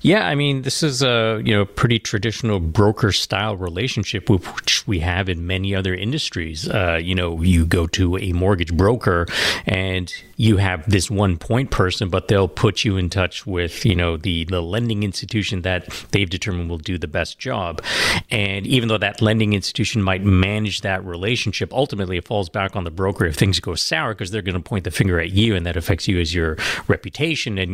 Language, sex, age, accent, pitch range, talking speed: English, male, 40-59, American, 95-115 Hz, 210 wpm